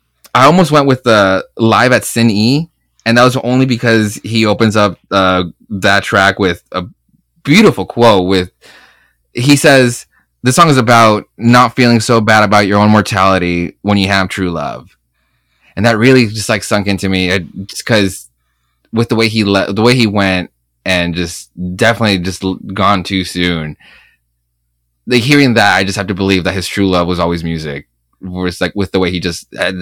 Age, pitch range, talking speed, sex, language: 20-39, 85-110 Hz, 185 wpm, male, English